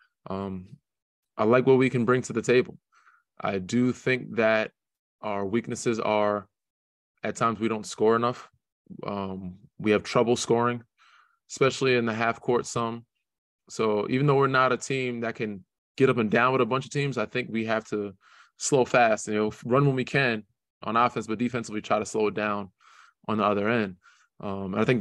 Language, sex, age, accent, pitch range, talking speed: English, male, 20-39, American, 110-125 Hz, 200 wpm